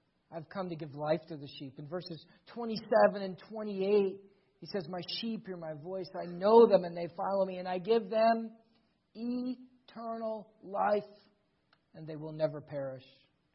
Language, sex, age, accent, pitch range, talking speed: English, male, 50-69, American, 145-205 Hz, 170 wpm